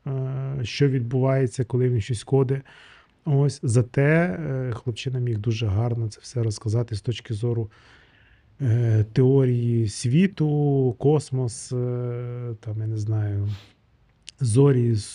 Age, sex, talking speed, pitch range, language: 20-39, male, 105 wpm, 110-135 Hz, Ukrainian